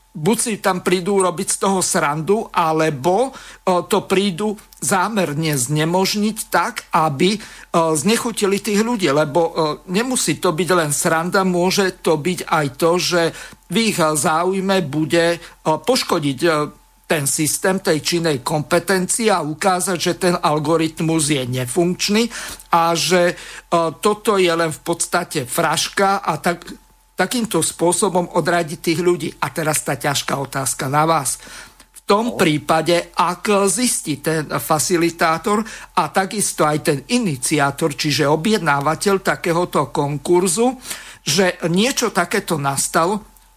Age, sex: 50-69, male